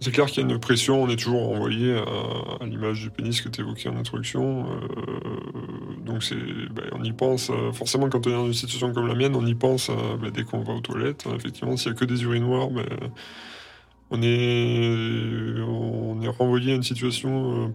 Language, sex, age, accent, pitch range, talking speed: French, male, 20-39, French, 110-125 Hz, 220 wpm